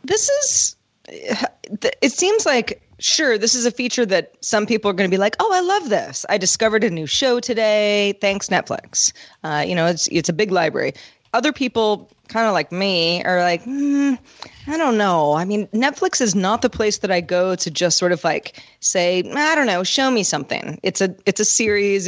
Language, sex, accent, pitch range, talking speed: English, female, American, 185-230 Hz, 210 wpm